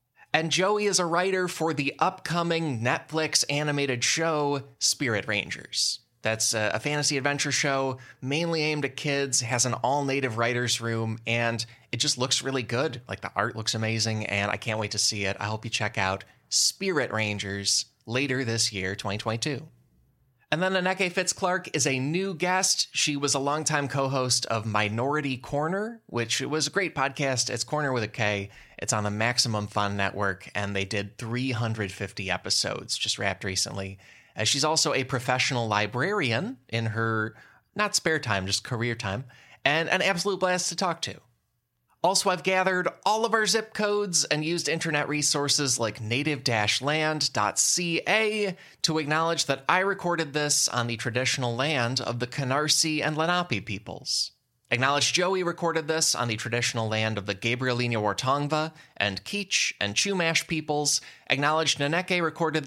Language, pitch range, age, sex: English, 115-155 Hz, 20-39, male